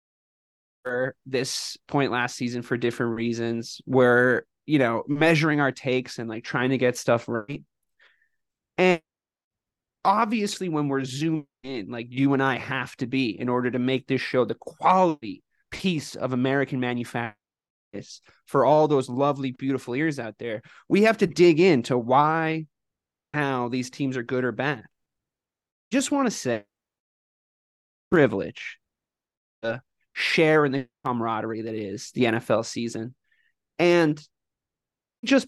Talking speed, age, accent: 140 wpm, 20-39, American